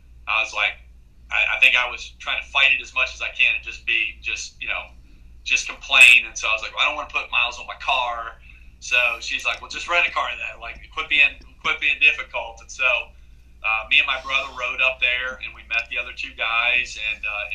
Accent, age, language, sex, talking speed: American, 30-49, English, male, 250 wpm